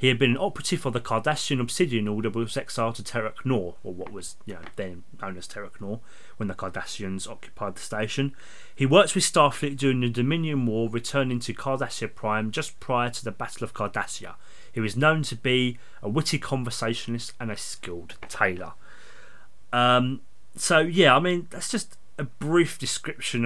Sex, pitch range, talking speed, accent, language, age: male, 105-130 Hz, 185 wpm, British, English, 30-49